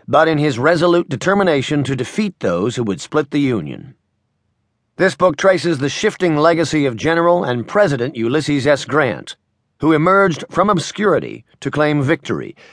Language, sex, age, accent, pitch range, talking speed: English, male, 50-69, American, 125-165 Hz, 155 wpm